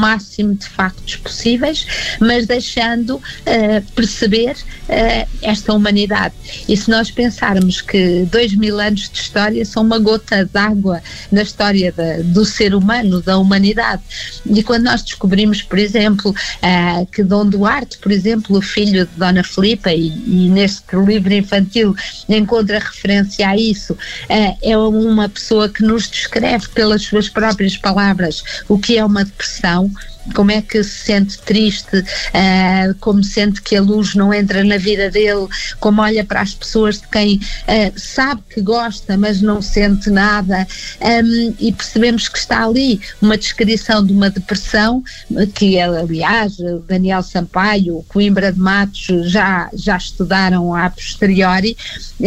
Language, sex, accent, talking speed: Portuguese, female, Brazilian, 150 wpm